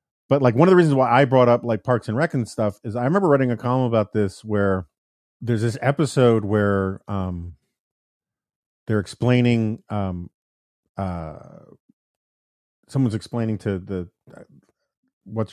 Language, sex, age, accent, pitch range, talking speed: English, male, 40-59, American, 100-130 Hz, 150 wpm